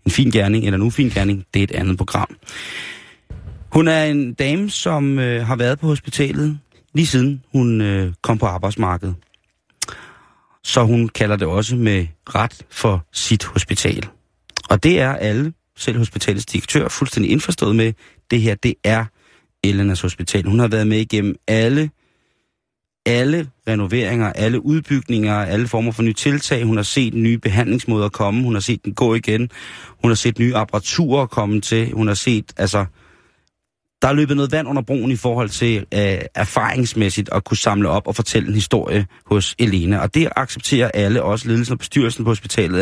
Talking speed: 175 wpm